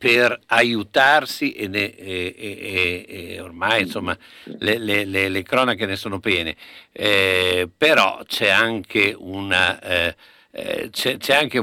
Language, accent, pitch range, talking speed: Italian, native, 90-110 Hz, 135 wpm